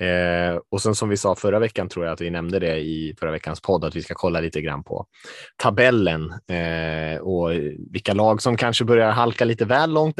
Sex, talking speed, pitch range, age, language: male, 220 wpm, 85-115 Hz, 20-39, Swedish